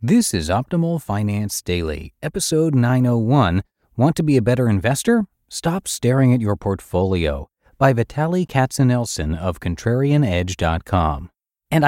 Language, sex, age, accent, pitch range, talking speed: English, male, 40-59, American, 90-135 Hz, 120 wpm